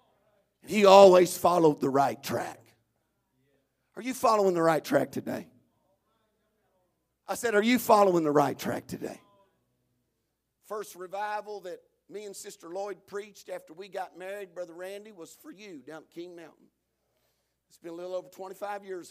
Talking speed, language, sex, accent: 155 wpm, English, male, American